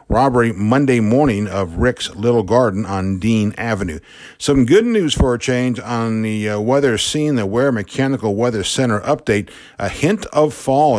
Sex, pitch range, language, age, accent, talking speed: male, 105-130 Hz, English, 50-69, American, 165 wpm